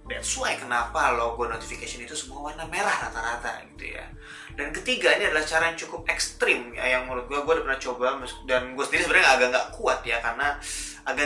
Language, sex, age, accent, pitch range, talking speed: Indonesian, male, 20-39, native, 125-155 Hz, 205 wpm